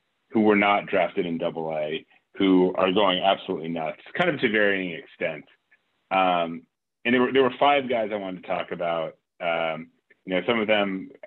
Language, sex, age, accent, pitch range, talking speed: English, male, 30-49, American, 85-105 Hz, 190 wpm